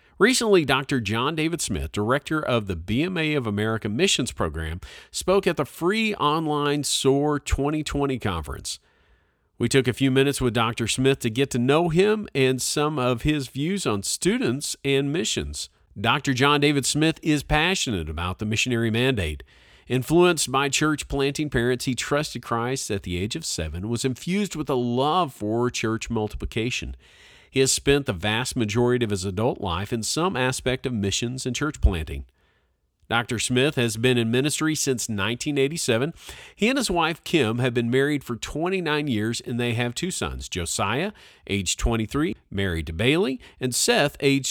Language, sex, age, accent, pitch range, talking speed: English, male, 50-69, American, 110-150 Hz, 165 wpm